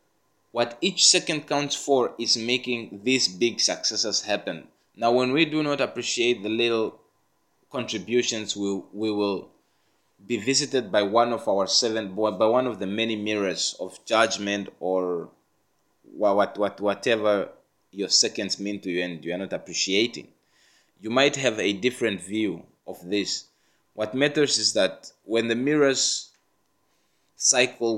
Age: 20-39